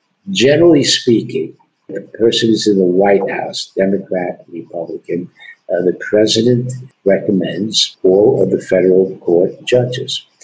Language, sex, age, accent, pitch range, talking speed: English, male, 60-79, American, 95-125 Hz, 120 wpm